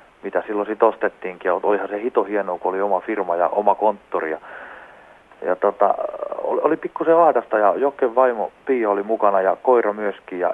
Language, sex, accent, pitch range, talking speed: Finnish, male, native, 100-115 Hz, 175 wpm